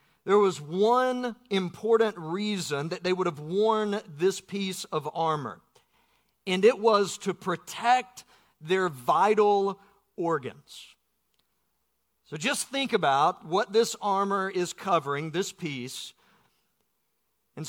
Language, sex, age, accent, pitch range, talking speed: English, male, 50-69, American, 175-220 Hz, 115 wpm